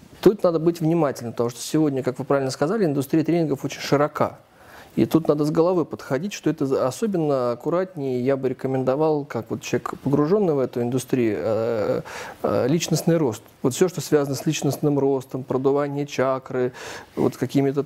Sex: male